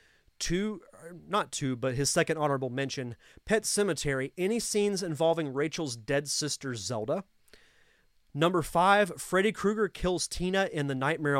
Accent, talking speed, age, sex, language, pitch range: American, 140 wpm, 30-49, male, English, 140-175 Hz